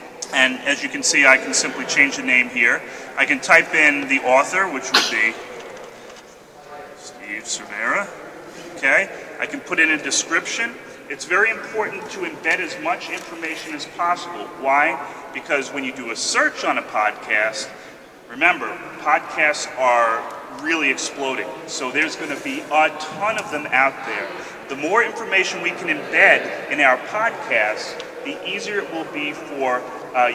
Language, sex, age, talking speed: English, male, 30-49, 160 wpm